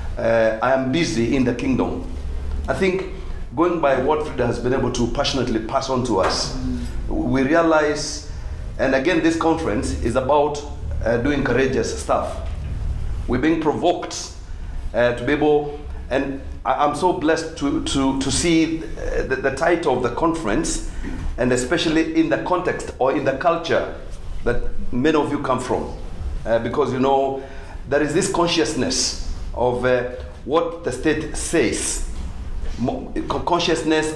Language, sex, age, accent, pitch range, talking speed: English, male, 40-59, South African, 100-155 Hz, 150 wpm